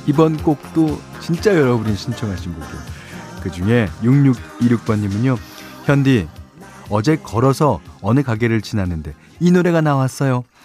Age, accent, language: 40-59, native, Korean